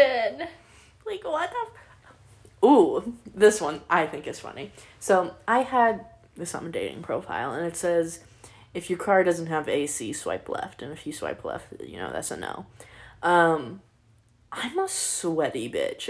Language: English